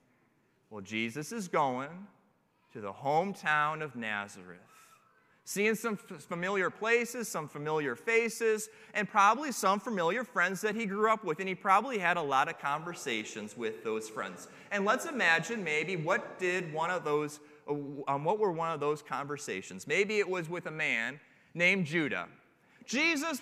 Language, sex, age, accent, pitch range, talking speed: English, male, 30-49, American, 155-230 Hz, 160 wpm